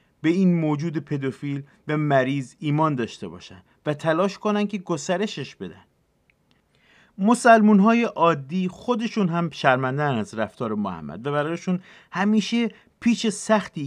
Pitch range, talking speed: 130-185 Hz, 125 wpm